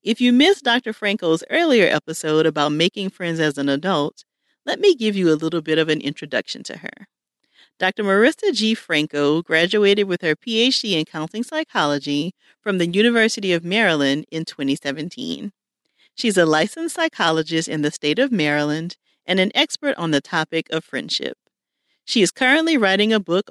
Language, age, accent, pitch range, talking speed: English, 40-59, American, 160-235 Hz, 170 wpm